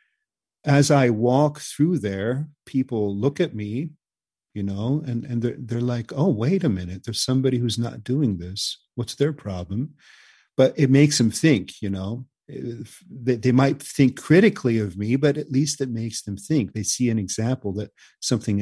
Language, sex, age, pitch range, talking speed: English, male, 50-69, 105-135 Hz, 180 wpm